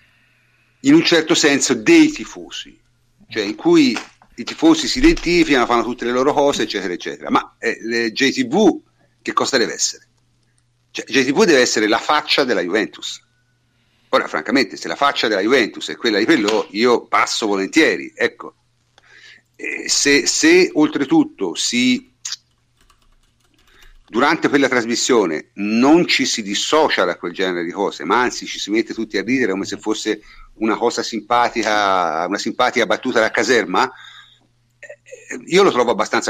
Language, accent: Italian, native